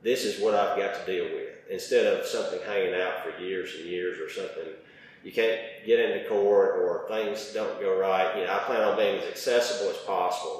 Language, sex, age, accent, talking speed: English, male, 40-59, American, 220 wpm